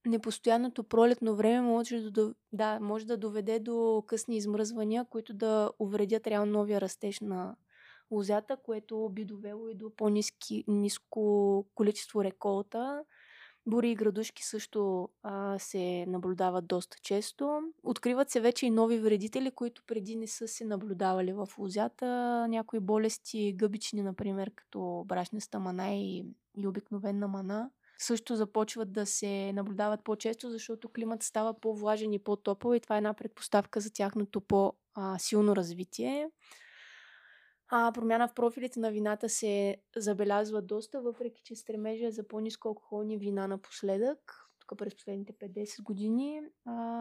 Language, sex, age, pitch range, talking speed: Bulgarian, female, 20-39, 205-230 Hz, 130 wpm